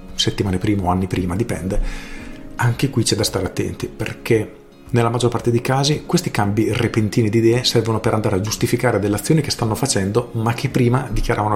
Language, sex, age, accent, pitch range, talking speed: Italian, male, 40-59, native, 105-130 Hz, 190 wpm